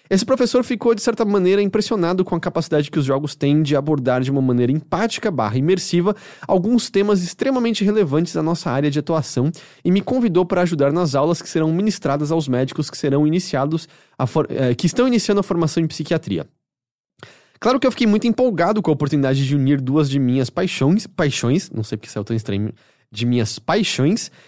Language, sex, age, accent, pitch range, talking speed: English, male, 20-39, Brazilian, 145-200 Hz, 200 wpm